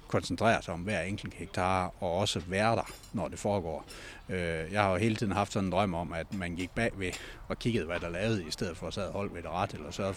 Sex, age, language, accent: male, 60-79, Danish, native